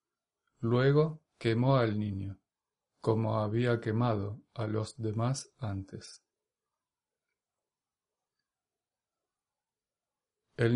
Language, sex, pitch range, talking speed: Spanish, male, 105-125 Hz, 65 wpm